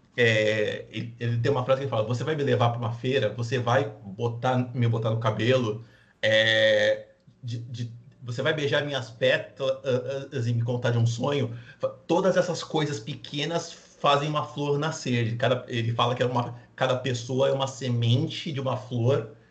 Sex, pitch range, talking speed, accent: male, 115-135 Hz, 180 wpm, Brazilian